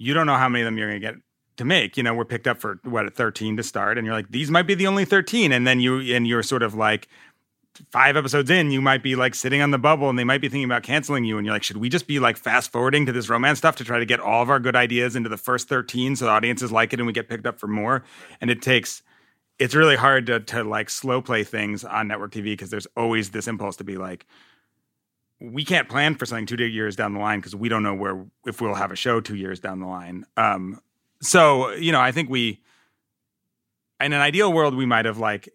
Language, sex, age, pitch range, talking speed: English, male, 30-49, 105-130 Hz, 275 wpm